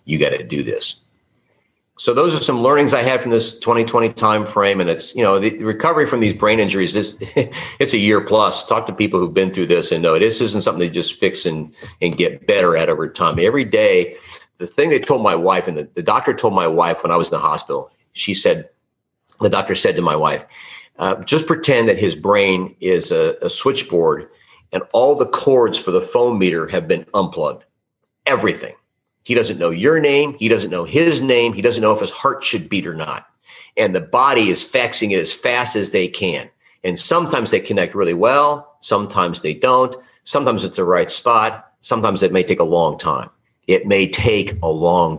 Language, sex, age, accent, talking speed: English, male, 40-59, American, 215 wpm